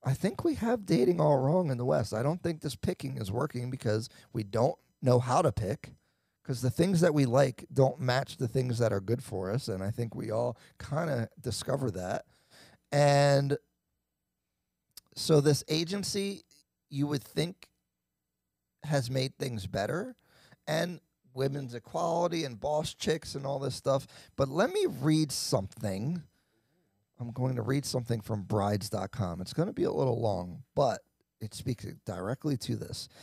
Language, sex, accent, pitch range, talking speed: English, male, American, 115-150 Hz, 170 wpm